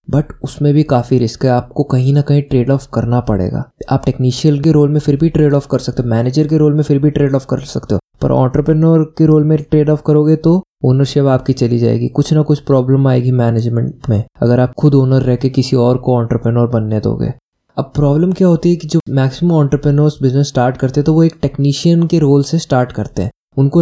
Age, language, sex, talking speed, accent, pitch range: 20-39, Hindi, male, 240 wpm, native, 125-150 Hz